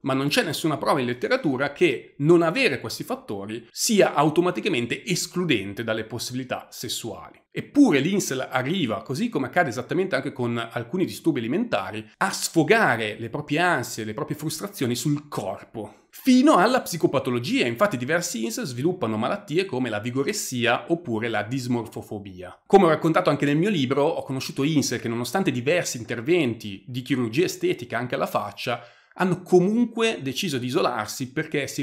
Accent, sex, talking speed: native, male, 155 wpm